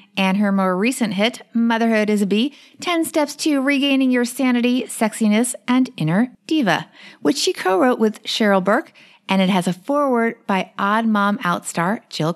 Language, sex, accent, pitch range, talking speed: English, female, American, 200-270 Hz, 180 wpm